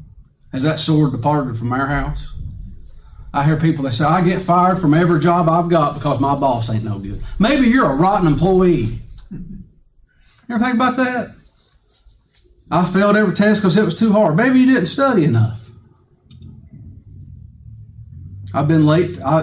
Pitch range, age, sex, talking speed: 115-180 Hz, 40-59, male, 165 wpm